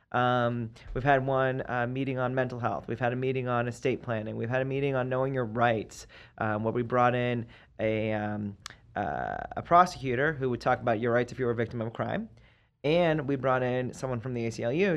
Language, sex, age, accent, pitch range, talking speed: English, male, 30-49, American, 115-135 Hz, 225 wpm